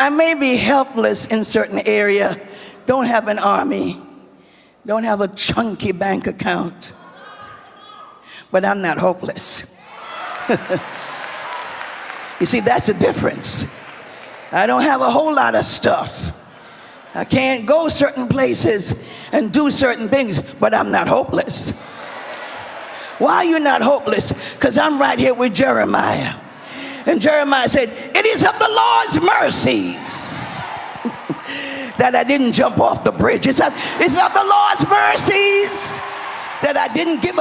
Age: 50-69